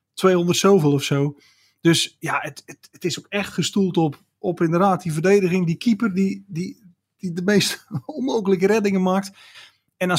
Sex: male